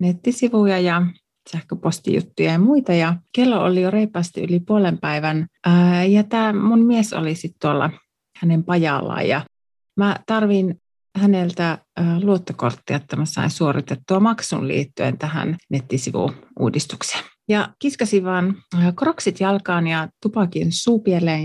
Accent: native